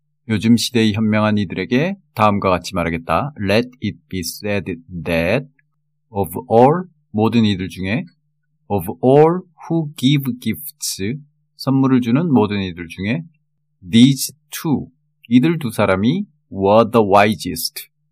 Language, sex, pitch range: Korean, male, 100-150 Hz